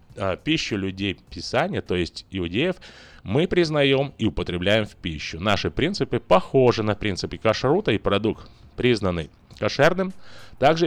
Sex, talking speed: male, 125 wpm